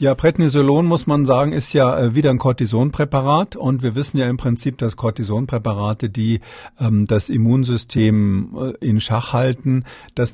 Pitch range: 110-130 Hz